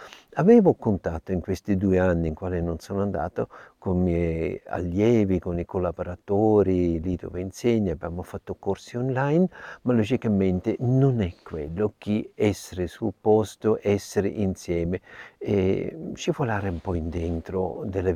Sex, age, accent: male, 60-79, native